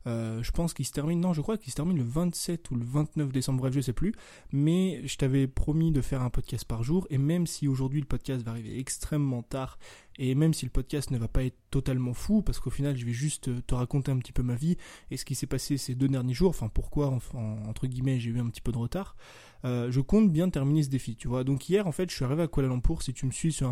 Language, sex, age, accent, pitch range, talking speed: French, male, 20-39, French, 125-150 Hz, 280 wpm